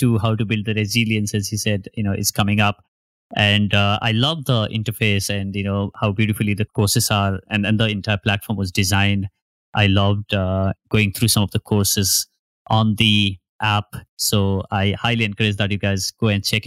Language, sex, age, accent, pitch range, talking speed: English, male, 20-39, Indian, 100-115 Hz, 205 wpm